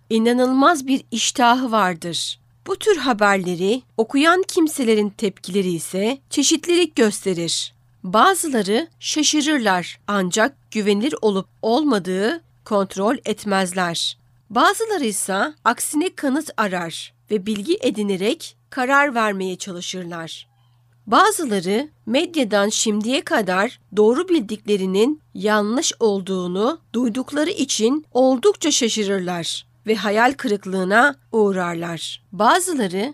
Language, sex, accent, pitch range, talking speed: Turkish, female, native, 185-270 Hz, 90 wpm